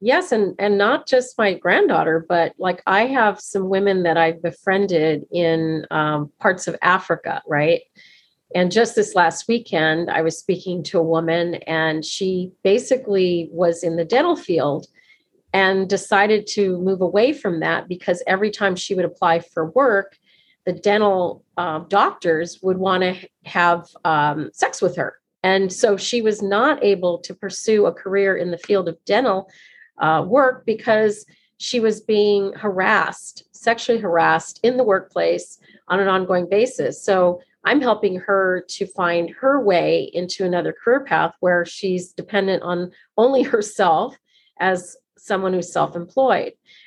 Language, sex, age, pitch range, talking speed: English, female, 40-59, 175-215 Hz, 155 wpm